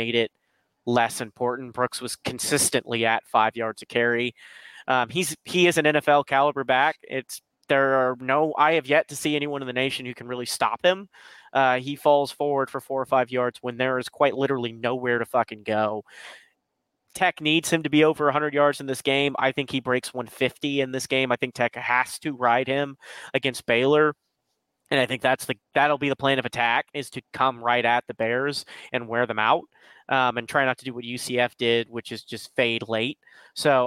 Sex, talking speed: male, 215 wpm